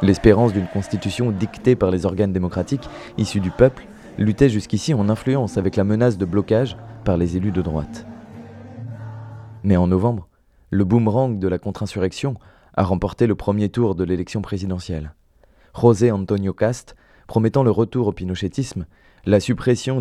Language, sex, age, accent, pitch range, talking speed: French, male, 20-39, French, 95-120 Hz, 155 wpm